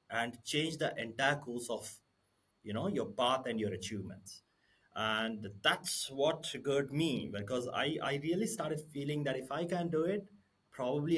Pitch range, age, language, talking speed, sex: 105-140 Hz, 30-49, English, 165 wpm, male